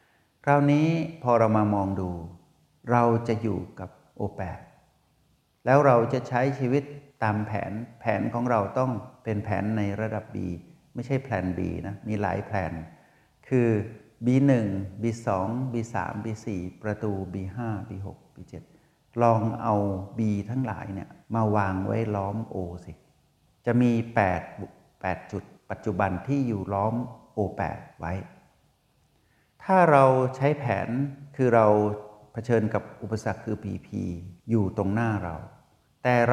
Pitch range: 100-130 Hz